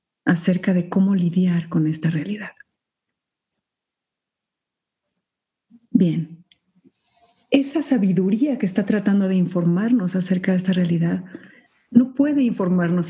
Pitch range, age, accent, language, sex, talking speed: 175-235 Hz, 50-69, Mexican, Spanish, female, 100 wpm